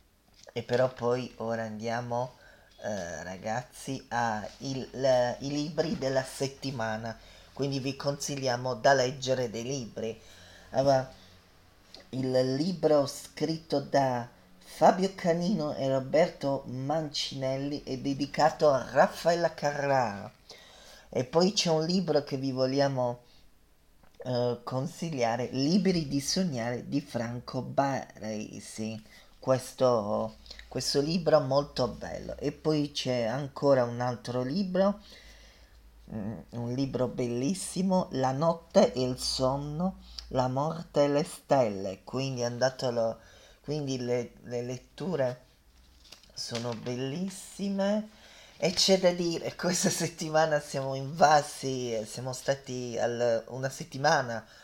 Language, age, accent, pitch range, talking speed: Italian, 30-49, native, 120-145 Hz, 105 wpm